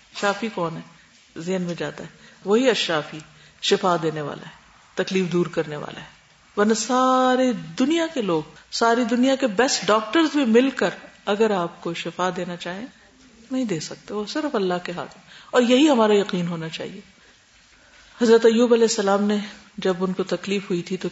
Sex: female